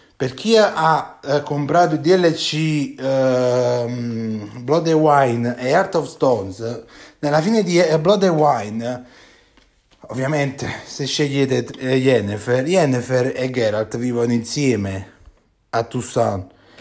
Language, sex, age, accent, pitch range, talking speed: Italian, male, 30-49, native, 130-160 Hz, 120 wpm